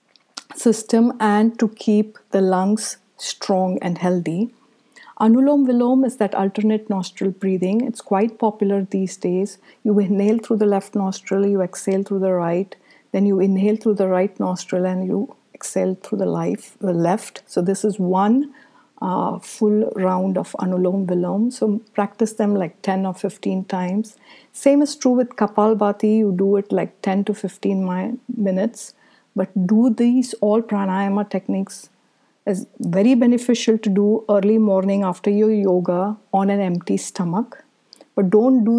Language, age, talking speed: English, 60-79, 160 wpm